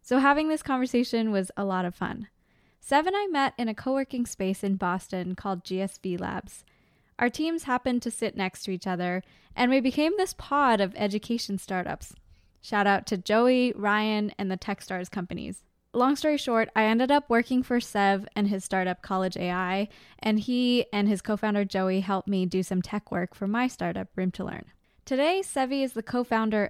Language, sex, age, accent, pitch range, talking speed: English, female, 10-29, American, 190-245 Hz, 185 wpm